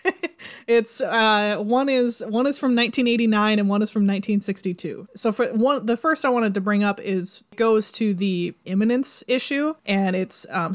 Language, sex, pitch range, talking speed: English, female, 190-225 Hz, 180 wpm